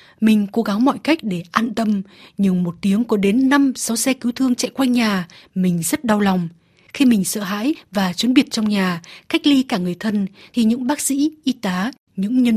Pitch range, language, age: 190-245 Hz, Vietnamese, 20-39